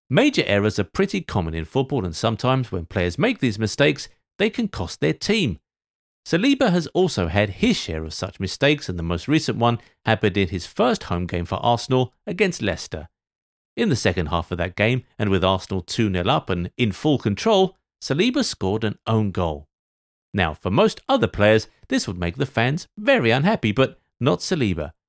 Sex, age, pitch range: male, 50-69, 90-140 Hz